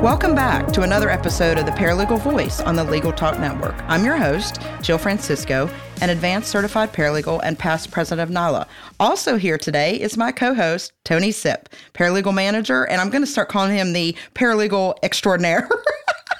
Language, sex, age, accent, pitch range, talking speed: English, female, 40-59, American, 170-220 Hz, 175 wpm